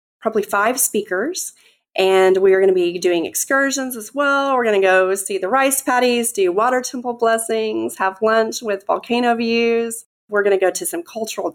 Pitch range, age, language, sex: 185-245 Hz, 30-49, English, female